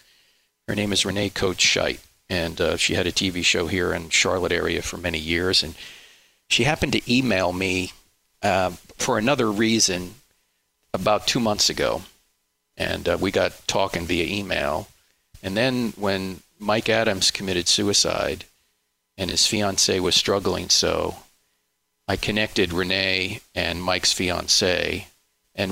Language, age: English, 40-59